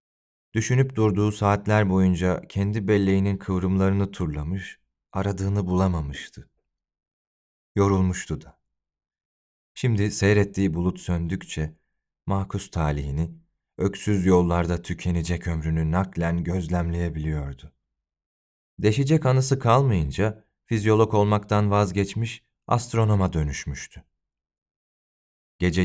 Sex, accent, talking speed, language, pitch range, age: male, native, 75 wpm, Turkish, 80-105 Hz, 40-59